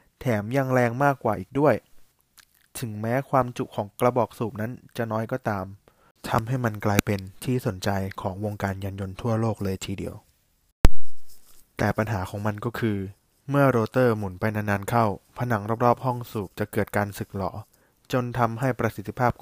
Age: 20-39